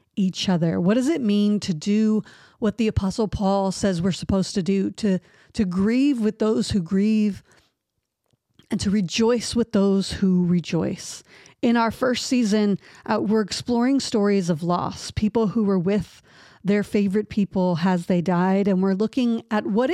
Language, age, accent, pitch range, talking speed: English, 40-59, American, 185-225 Hz, 170 wpm